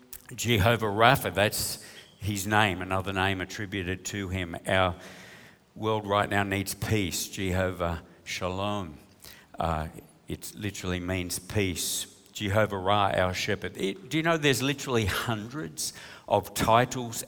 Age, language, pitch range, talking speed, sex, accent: 60-79, English, 95-115 Hz, 120 wpm, male, Australian